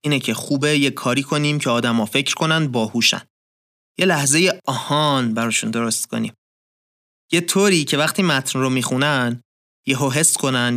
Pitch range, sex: 125-155 Hz, male